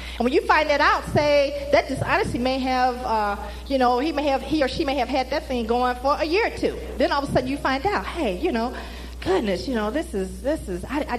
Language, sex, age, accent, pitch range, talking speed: English, female, 40-59, American, 225-310 Hz, 275 wpm